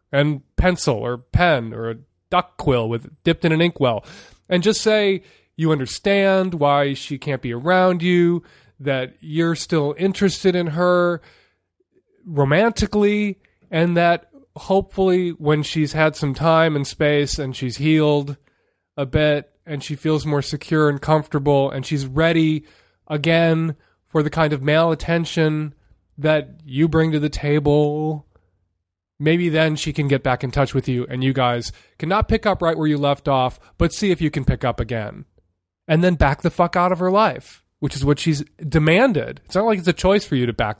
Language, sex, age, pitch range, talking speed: English, male, 20-39, 135-180 Hz, 180 wpm